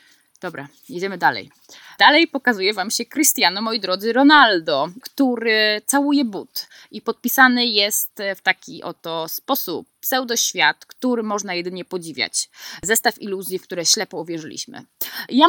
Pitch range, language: 195-250 Hz, Polish